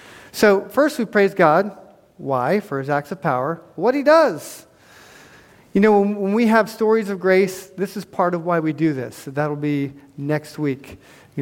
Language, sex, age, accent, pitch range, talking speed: English, male, 40-59, American, 160-215 Hz, 190 wpm